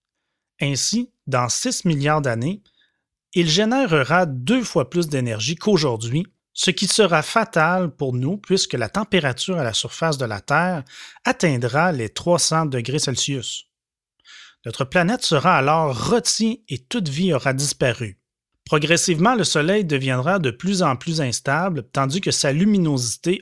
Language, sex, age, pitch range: French, male, 30-49, 130-180 Hz